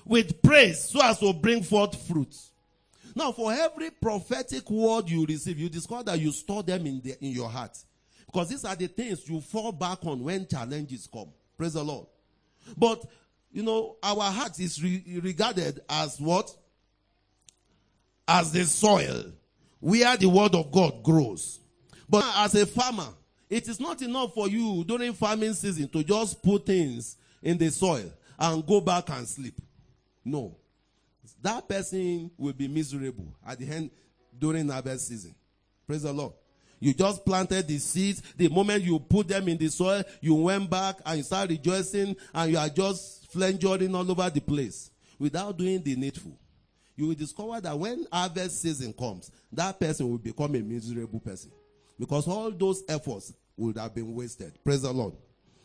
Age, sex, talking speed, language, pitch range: 40-59, male, 170 wpm, English, 140-200 Hz